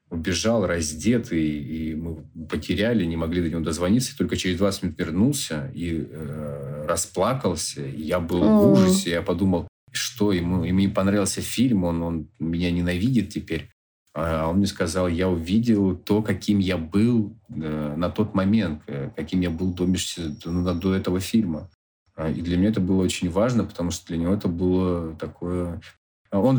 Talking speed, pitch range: 160 wpm, 85-105 Hz